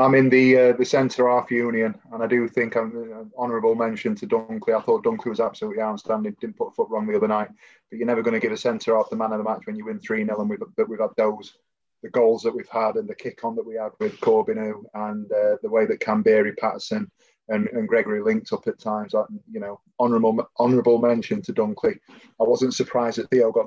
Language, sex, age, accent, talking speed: English, male, 20-39, British, 235 wpm